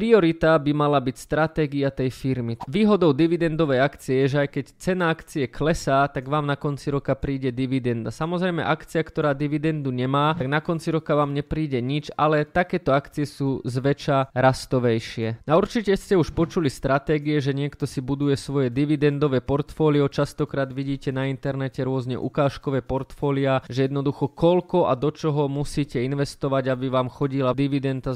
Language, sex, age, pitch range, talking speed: Slovak, male, 20-39, 135-155 Hz, 160 wpm